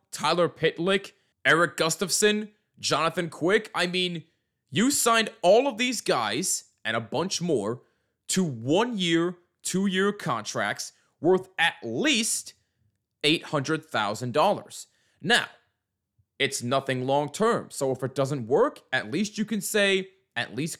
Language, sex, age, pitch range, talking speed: English, male, 20-39, 120-185 Hz, 120 wpm